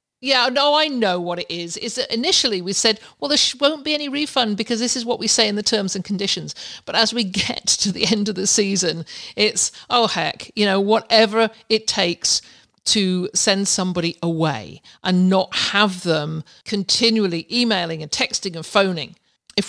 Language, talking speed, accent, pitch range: English, 185 wpm, British, 190-240 Hz